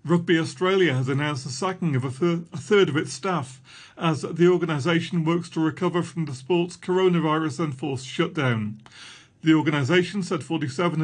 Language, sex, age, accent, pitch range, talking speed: English, male, 40-59, British, 145-175 Hz, 150 wpm